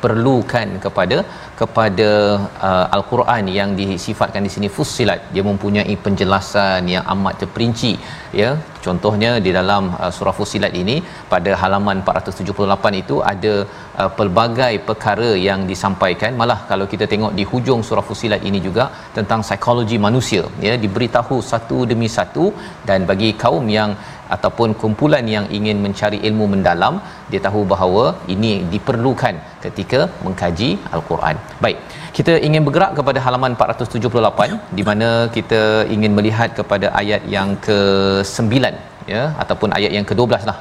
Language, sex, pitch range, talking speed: Malayalam, male, 100-115 Hz, 135 wpm